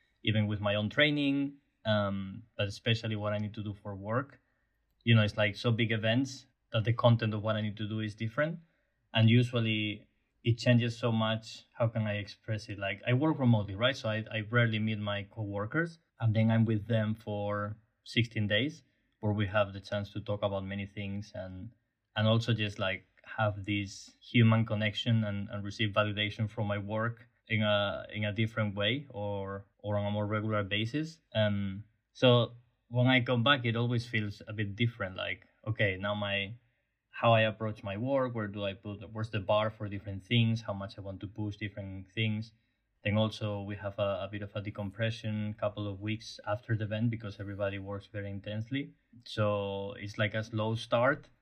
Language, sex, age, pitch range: English, male, 20-39, 105-115 Hz